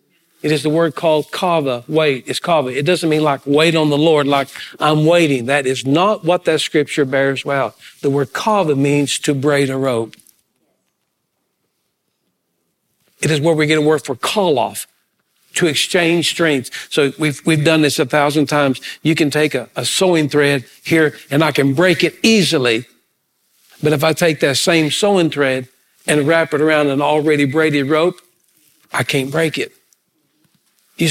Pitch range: 145-175 Hz